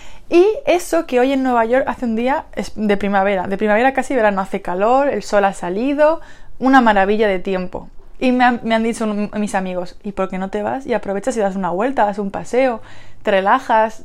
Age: 20-39